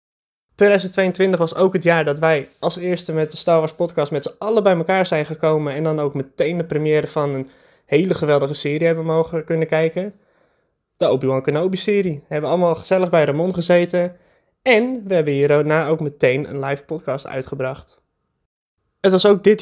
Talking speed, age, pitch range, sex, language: 185 wpm, 20-39, 145-175 Hz, male, Dutch